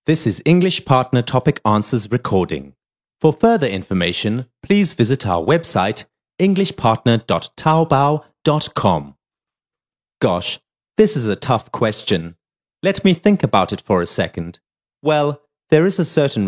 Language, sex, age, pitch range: Chinese, male, 30-49, 105-160 Hz